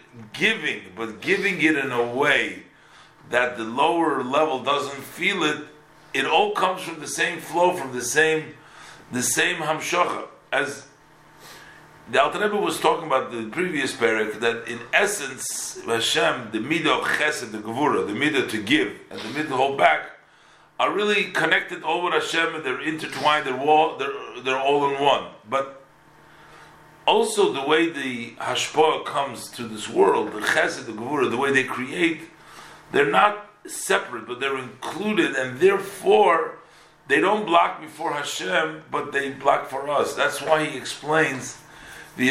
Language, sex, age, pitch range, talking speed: English, male, 50-69, 125-165 Hz, 160 wpm